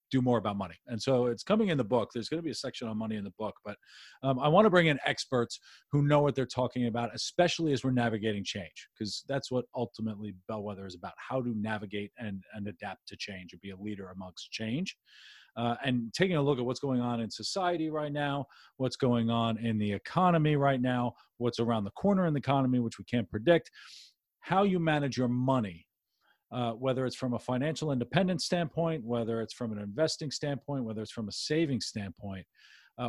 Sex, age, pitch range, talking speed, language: male, 40-59, 110-135 Hz, 220 wpm, English